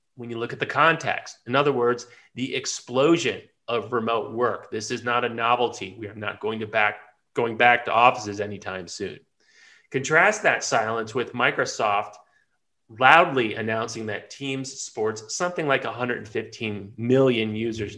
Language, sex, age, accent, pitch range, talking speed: English, male, 30-49, American, 110-135 Hz, 155 wpm